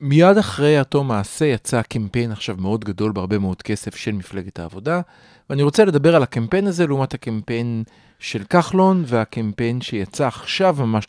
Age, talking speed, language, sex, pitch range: 40-59, 155 wpm, Hebrew, male, 110-160 Hz